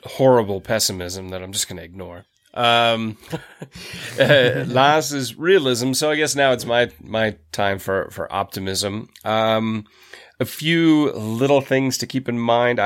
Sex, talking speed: male, 145 wpm